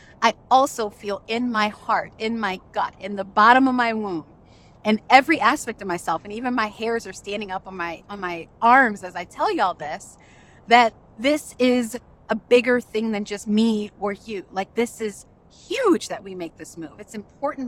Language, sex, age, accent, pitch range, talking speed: English, female, 30-49, American, 190-250 Hz, 200 wpm